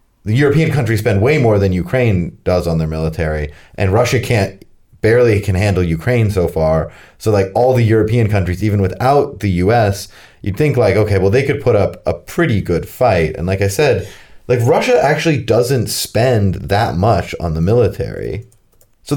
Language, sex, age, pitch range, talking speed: English, male, 30-49, 90-125 Hz, 190 wpm